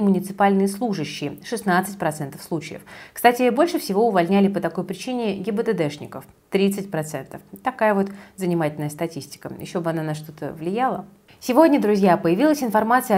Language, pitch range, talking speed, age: Russian, 170-230 Hz, 125 wpm, 30-49